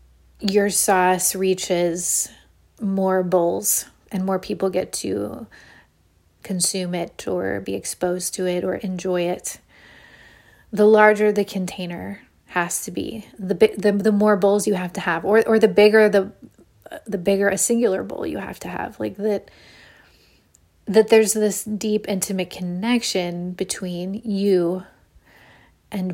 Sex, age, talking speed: female, 30-49, 140 wpm